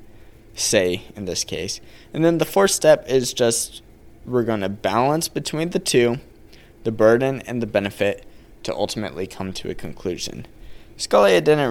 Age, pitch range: 20-39, 100-120 Hz